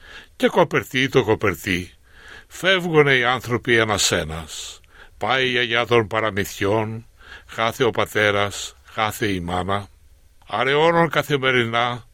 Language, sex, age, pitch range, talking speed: Greek, male, 60-79, 100-145 Hz, 110 wpm